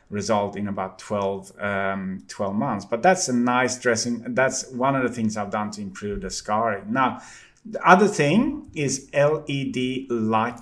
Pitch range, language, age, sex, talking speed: 110-130 Hz, English, 30-49, male, 170 wpm